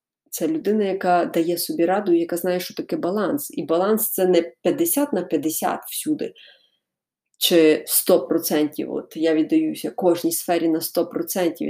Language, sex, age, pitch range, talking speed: Ukrainian, female, 20-39, 170-260 Hz, 150 wpm